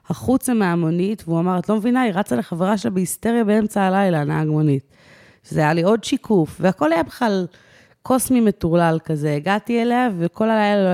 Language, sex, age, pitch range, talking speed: Hebrew, female, 20-39, 155-200 Hz, 175 wpm